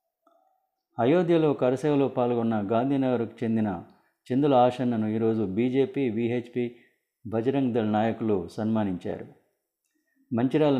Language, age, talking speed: Telugu, 30-49, 85 wpm